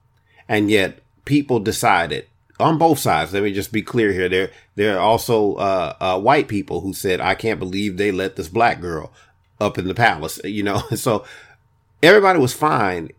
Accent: American